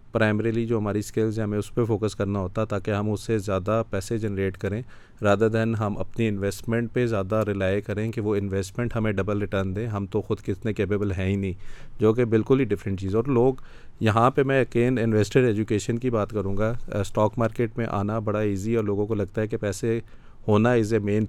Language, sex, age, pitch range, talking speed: Urdu, male, 40-59, 105-115 Hz, 225 wpm